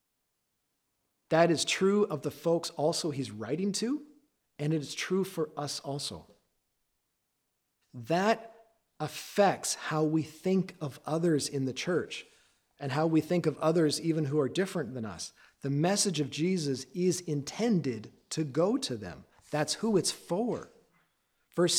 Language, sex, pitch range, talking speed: English, male, 145-190 Hz, 150 wpm